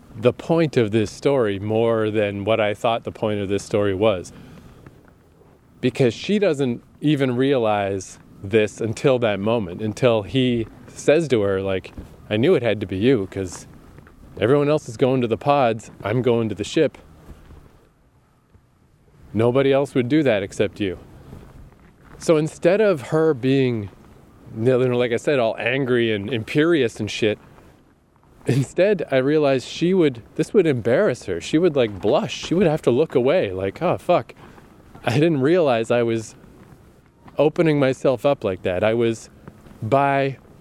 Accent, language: American, English